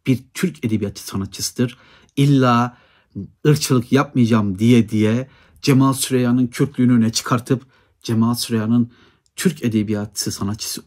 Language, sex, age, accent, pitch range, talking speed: Turkish, male, 60-79, native, 105-135 Hz, 105 wpm